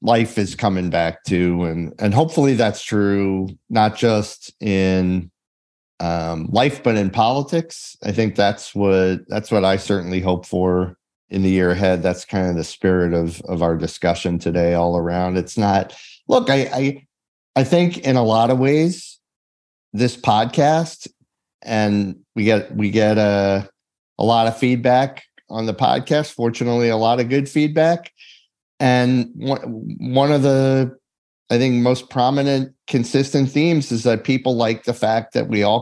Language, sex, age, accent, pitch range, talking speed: English, male, 40-59, American, 95-125 Hz, 160 wpm